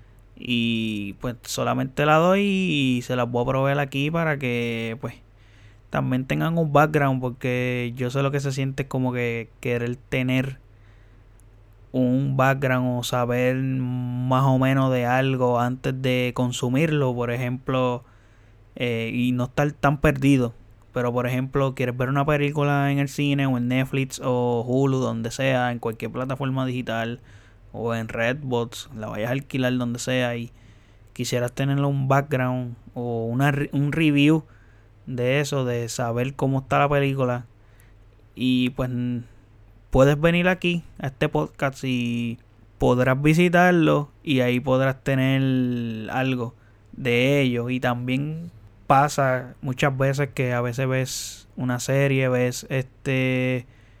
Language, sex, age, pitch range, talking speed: Spanish, male, 20-39, 115-135 Hz, 145 wpm